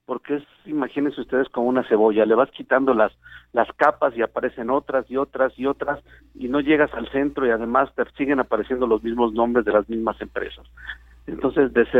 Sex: male